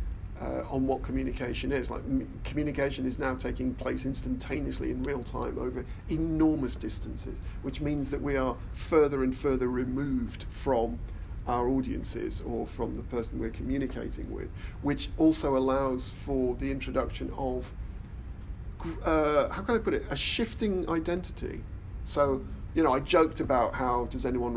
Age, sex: 50-69, male